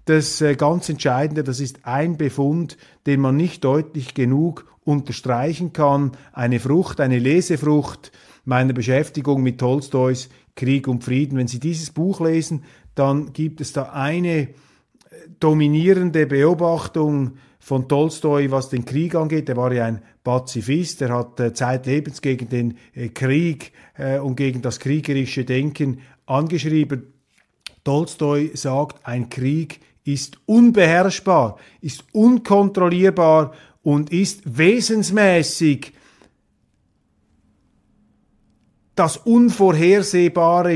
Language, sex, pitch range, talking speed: German, male, 135-175 Hz, 105 wpm